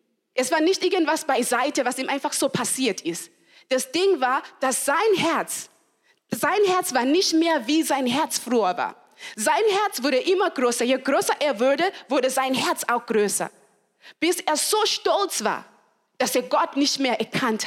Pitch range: 240-320 Hz